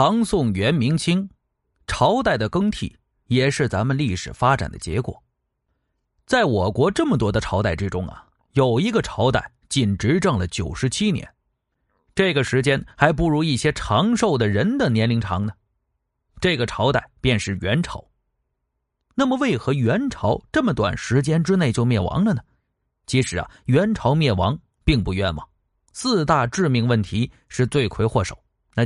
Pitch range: 105-170 Hz